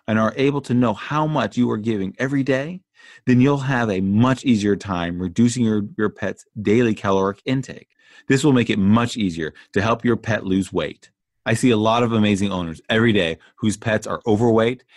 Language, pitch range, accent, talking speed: English, 100-125 Hz, American, 205 wpm